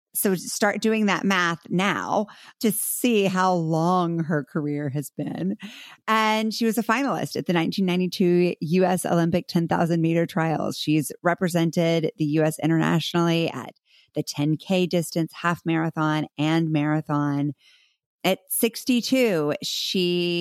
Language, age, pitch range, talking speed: English, 30-49, 150-205 Hz, 125 wpm